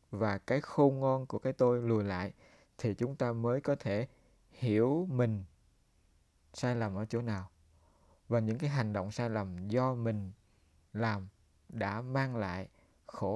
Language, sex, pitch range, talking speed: Vietnamese, male, 100-125 Hz, 160 wpm